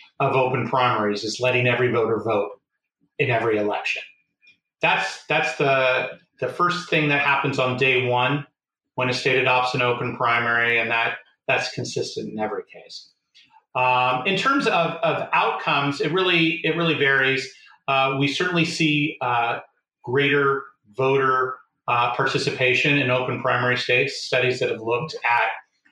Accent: American